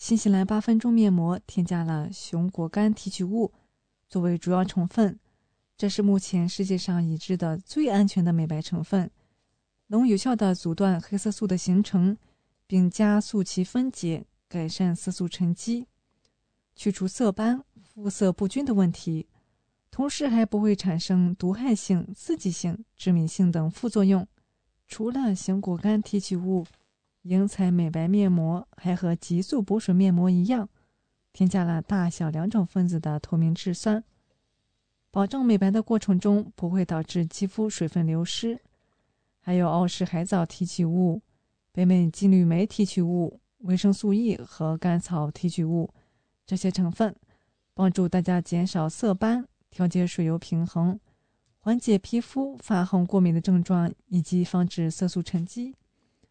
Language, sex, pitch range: English, female, 175-210 Hz